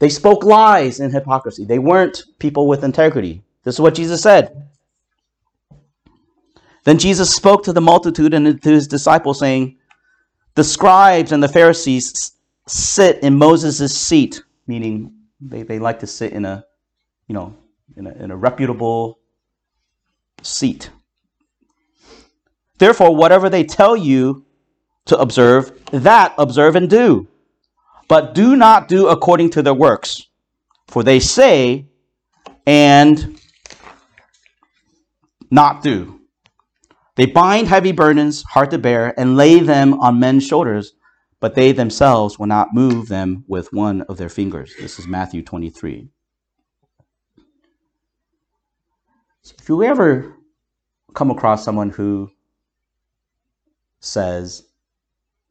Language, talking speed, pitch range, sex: English, 120 wpm, 120-180 Hz, male